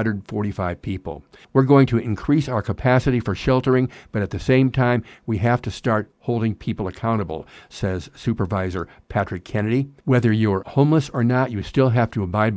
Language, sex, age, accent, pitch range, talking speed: English, male, 60-79, American, 100-125 Hz, 170 wpm